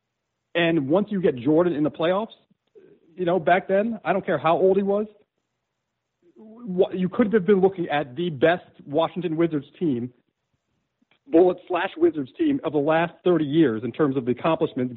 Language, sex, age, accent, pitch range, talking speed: English, male, 40-59, American, 155-210 Hz, 175 wpm